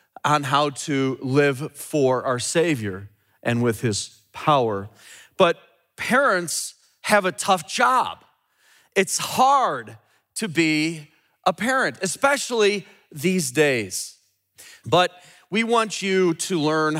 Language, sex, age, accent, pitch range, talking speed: English, male, 30-49, American, 140-205 Hz, 115 wpm